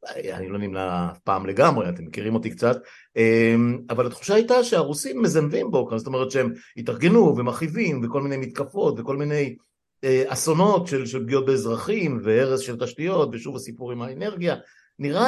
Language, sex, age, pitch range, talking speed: Hebrew, male, 50-69, 115-160 Hz, 145 wpm